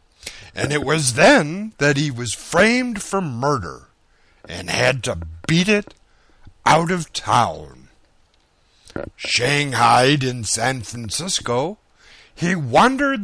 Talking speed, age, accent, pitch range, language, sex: 110 wpm, 60-79, American, 105-170 Hz, English, male